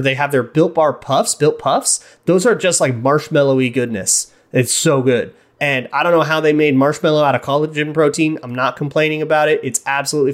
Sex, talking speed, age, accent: male, 210 wpm, 30-49, American